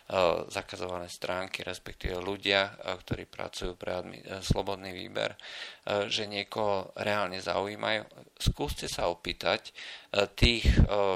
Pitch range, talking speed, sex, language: 95-105 Hz, 90 wpm, male, Slovak